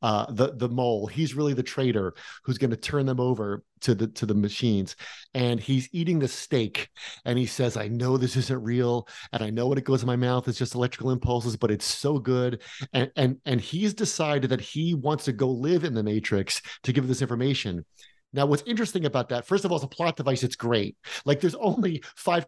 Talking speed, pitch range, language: 225 wpm, 120-155 Hz, English